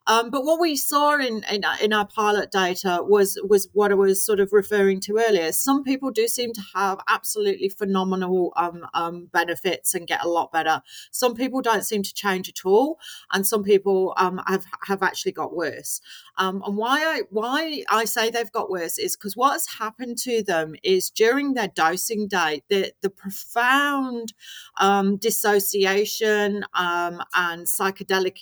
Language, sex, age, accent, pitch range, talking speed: English, female, 40-59, British, 185-245 Hz, 175 wpm